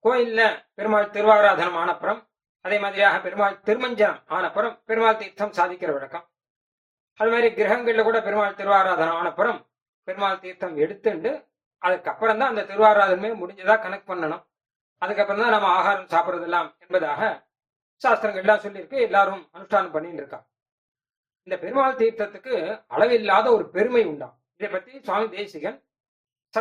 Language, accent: Tamil, native